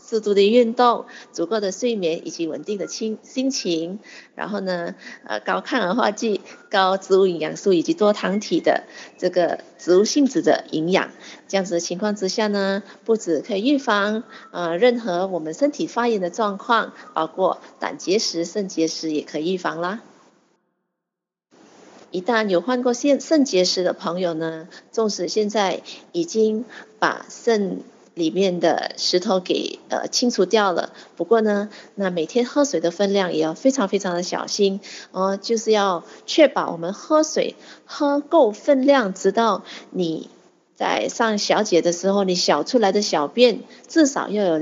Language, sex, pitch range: Chinese, female, 180-230 Hz